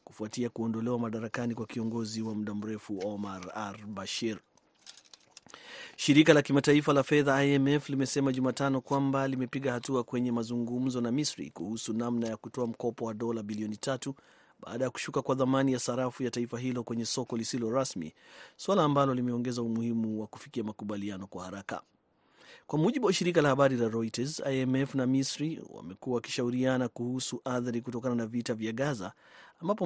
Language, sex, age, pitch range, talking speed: Swahili, male, 30-49, 115-135 Hz, 160 wpm